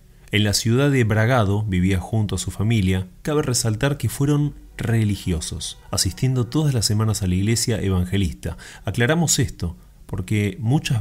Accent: Argentinian